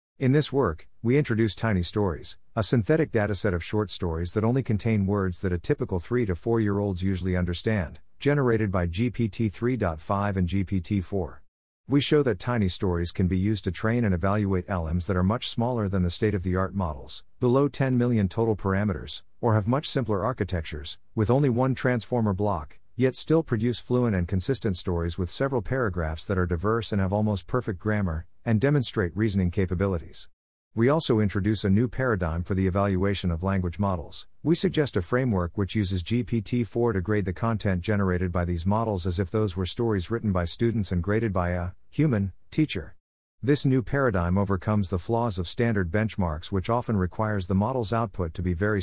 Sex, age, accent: male, 50-69, American